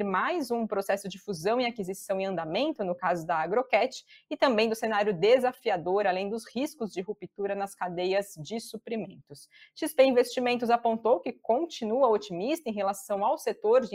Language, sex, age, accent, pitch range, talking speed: Portuguese, female, 20-39, Brazilian, 195-245 Hz, 165 wpm